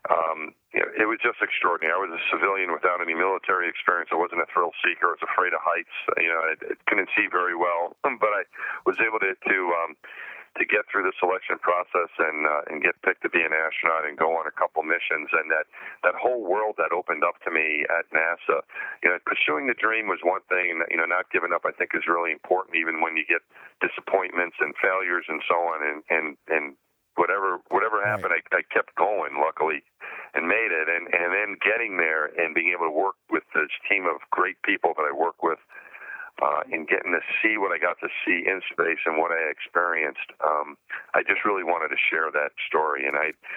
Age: 40-59